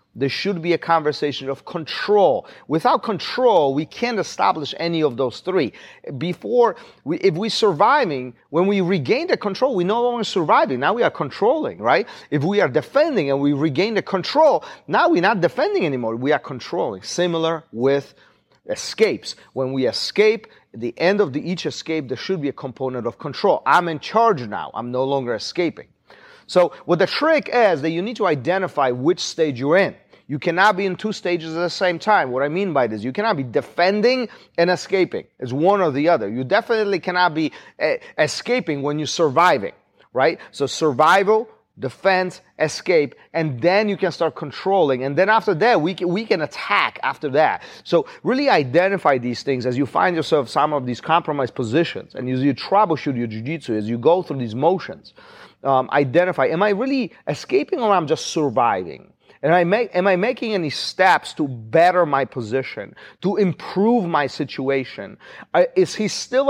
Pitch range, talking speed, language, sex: 140-210 Hz, 185 wpm, English, male